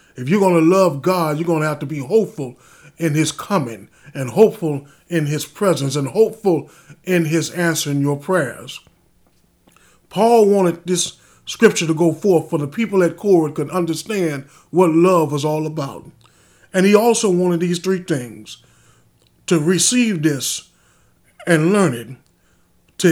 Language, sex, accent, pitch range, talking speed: English, male, American, 155-195 Hz, 160 wpm